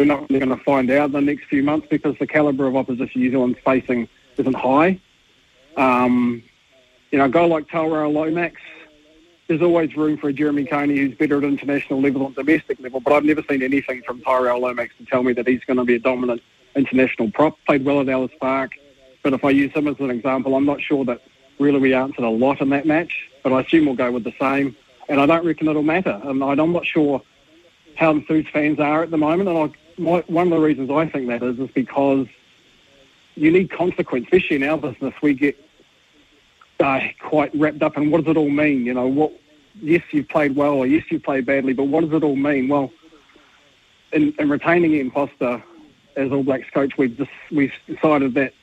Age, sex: 40-59, male